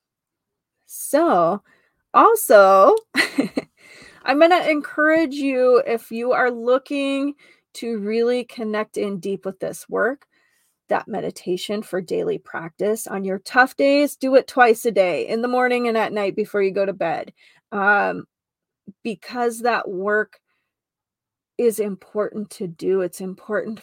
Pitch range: 195-245 Hz